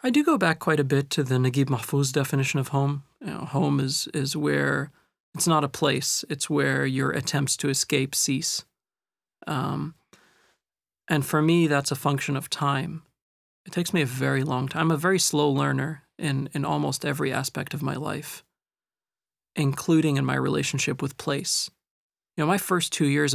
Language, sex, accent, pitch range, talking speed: English, male, American, 135-160 Hz, 185 wpm